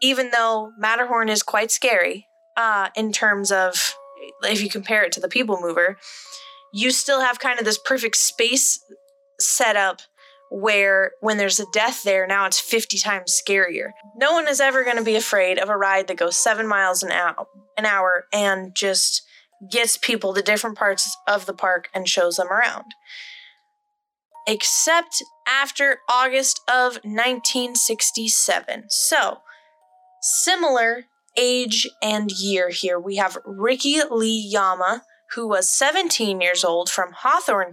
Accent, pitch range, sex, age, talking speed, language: American, 200-275 Hz, female, 20-39, 150 wpm, English